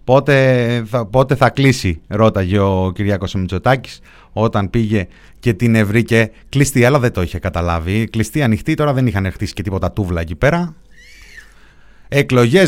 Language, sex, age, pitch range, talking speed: Greek, male, 30-49, 105-135 Hz, 145 wpm